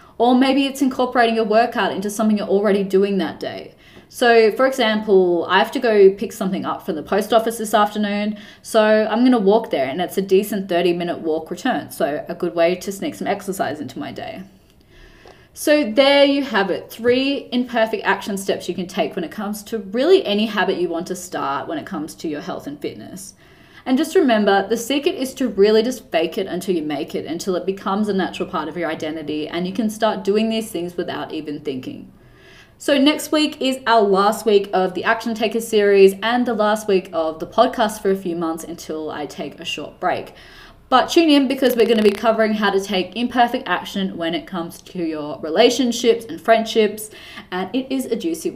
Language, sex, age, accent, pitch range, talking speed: English, female, 20-39, Australian, 185-240 Hz, 215 wpm